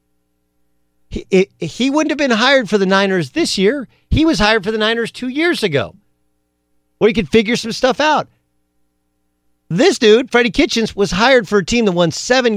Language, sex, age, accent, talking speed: English, male, 50-69, American, 185 wpm